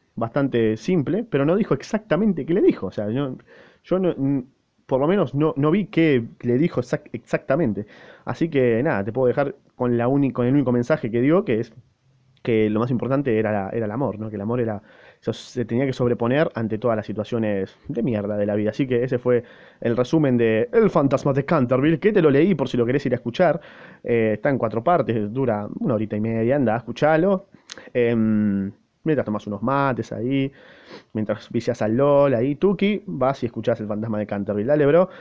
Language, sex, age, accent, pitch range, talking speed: Spanish, male, 20-39, Argentinian, 115-150 Hz, 210 wpm